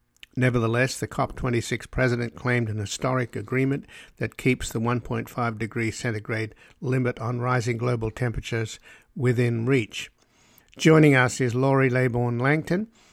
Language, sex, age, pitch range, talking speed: English, male, 60-79, 115-130 Hz, 125 wpm